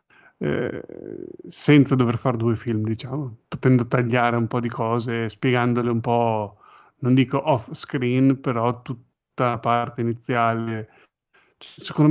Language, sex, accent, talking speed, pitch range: Italian, male, native, 130 wpm, 115-135 Hz